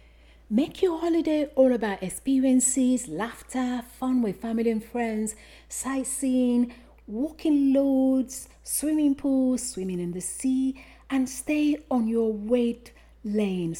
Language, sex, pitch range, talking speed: English, female, 205-265 Hz, 115 wpm